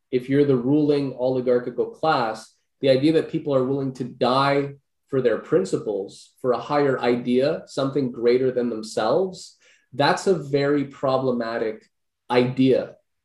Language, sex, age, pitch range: English, male, 20-39, 115-140 Hz